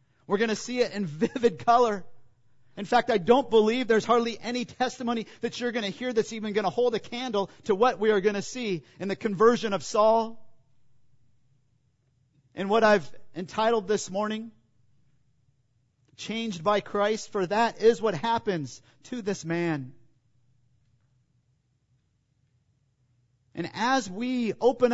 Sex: male